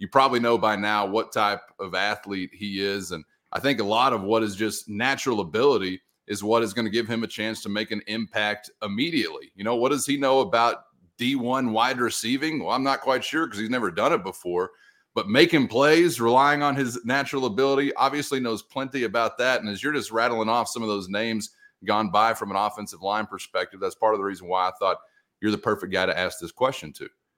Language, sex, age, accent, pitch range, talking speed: English, male, 30-49, American, 105-135 Hz, 230 wpm